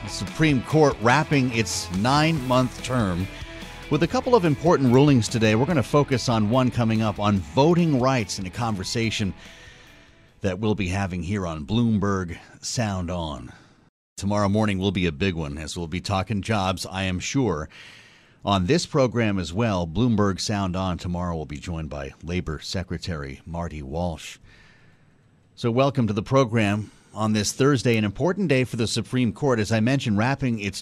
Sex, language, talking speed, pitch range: male, English, 175 wpm, 95-125 Hz